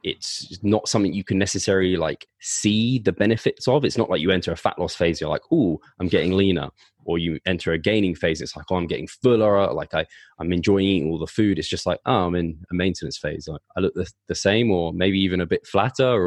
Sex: male